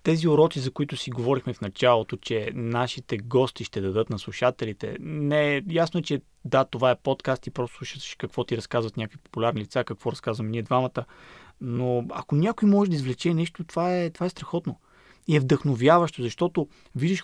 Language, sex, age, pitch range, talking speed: Bulgarian, male, 20-39, 125-165 Hz, 185 wpm